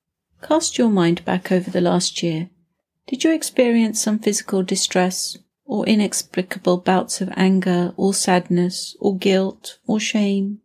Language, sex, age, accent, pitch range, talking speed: English, female, 40-59, British, 180-210 Hz, 140 wpm